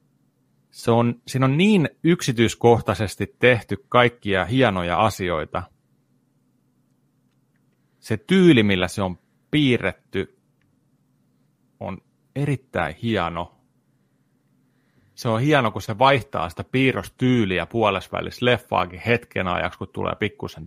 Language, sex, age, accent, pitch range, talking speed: Finnish, male, 30-49, native, 95-125 Hz, 95 wpm